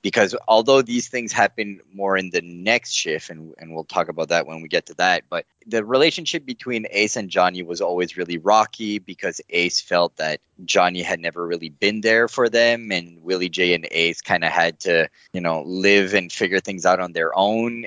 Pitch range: 90-115 Hz